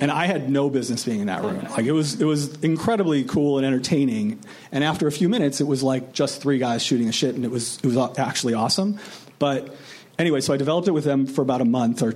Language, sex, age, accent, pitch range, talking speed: English, male, 40-59, American, 130-170 Hz, 255 wpm